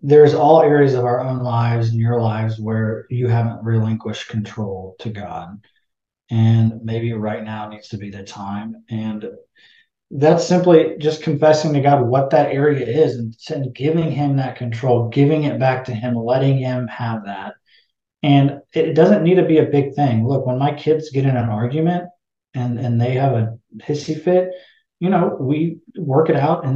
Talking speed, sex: 185 wpm, male